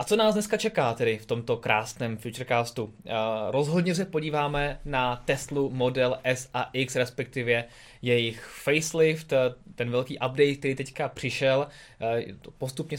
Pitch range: 120-145 Hz